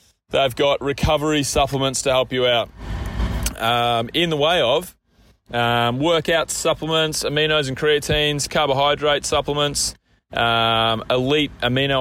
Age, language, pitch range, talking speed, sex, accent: 20-39, English, 120-145 Hz, 120 wpm, male, Australian